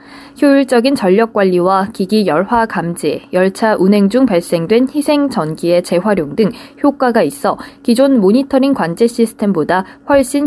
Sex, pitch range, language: female, 195-260 Hz, Korean